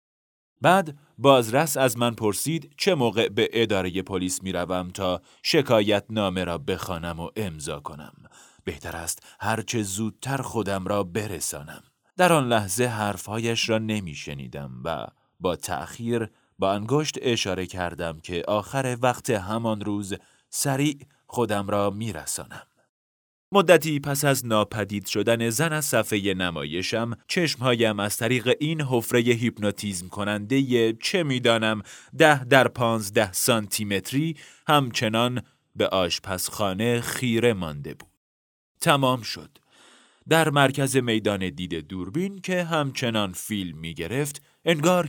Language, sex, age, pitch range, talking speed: Persian, male, 30-49, 95-135 Hz, 120 wpm